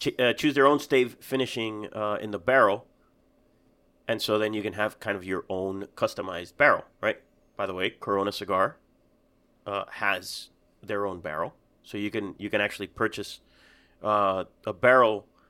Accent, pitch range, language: American, 100-125 Hz, English